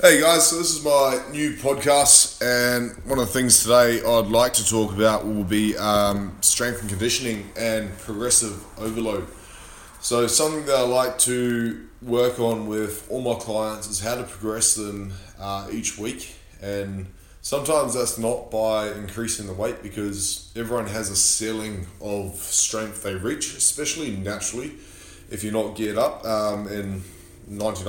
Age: 20-39